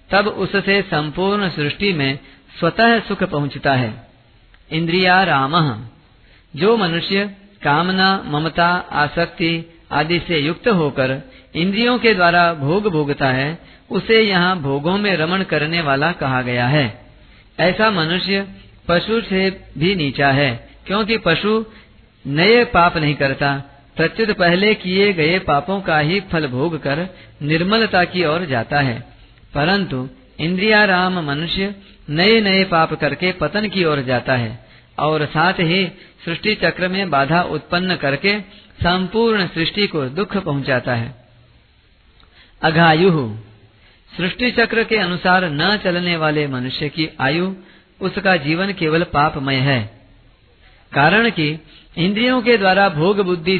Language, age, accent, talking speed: Hindi, 50-69, native, 130 wpm